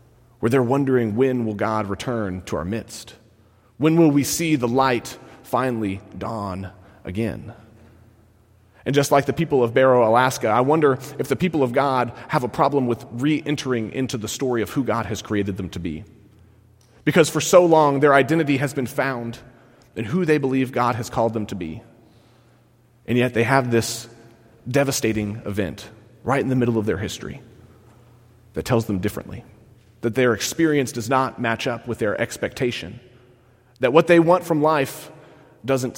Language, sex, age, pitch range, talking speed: English, male, 30-49, 110-135 Hz, 170 wpm